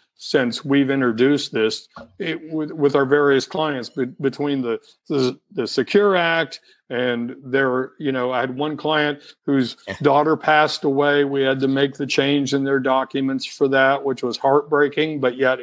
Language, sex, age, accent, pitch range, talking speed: English, male, 50-69, American, 125-150 Hz, 160 wpm